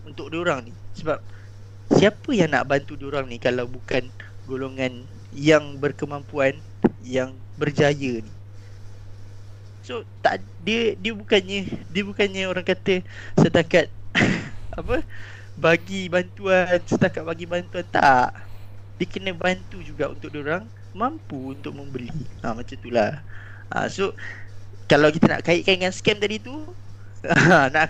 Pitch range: 100-165 Hz